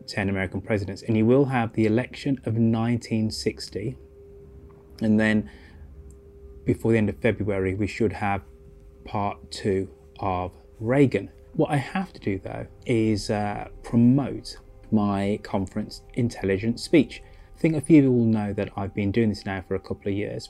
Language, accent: English, British